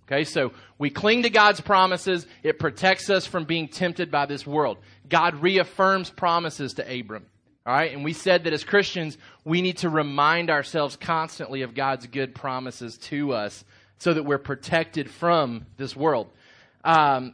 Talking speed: 170 wpm